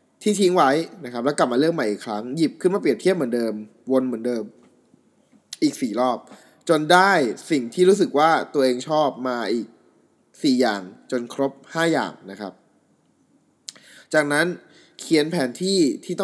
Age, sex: 20-39, male